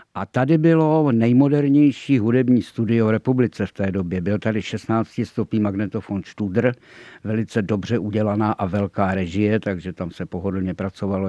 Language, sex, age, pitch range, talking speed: Czech, male, 50-69, 105-125 Hz, 150 wpm